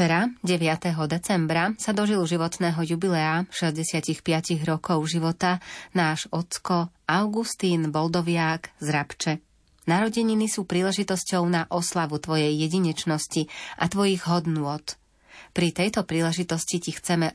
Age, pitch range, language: 30-49, 155-175 Hz, Slovak